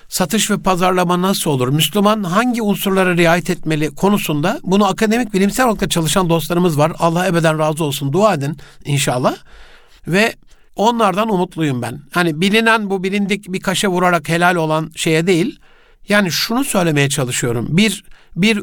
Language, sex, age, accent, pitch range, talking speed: Turkish, male, 60-79, native, 155-195 Hz, 150 wpm